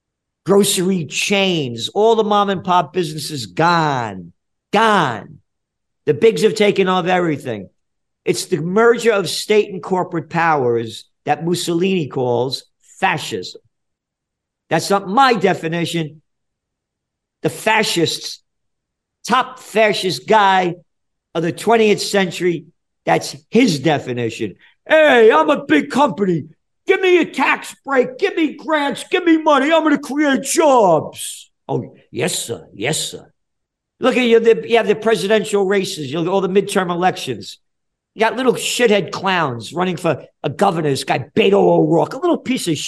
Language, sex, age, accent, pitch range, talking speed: English, male, 50-69, American, 165-230 Hz, 140 wpm